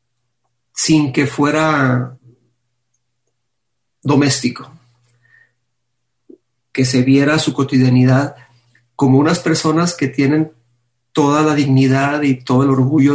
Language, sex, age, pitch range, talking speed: Spanish, male, 40-59, 120-145 Hz, 95 wpm